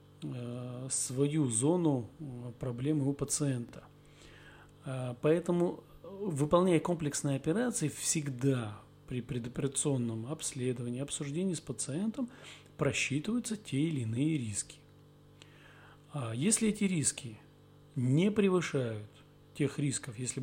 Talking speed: 85 wpm